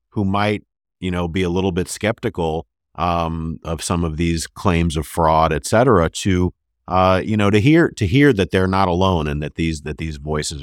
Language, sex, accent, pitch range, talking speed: English, male, American, 75-100 Hz, 210 wpm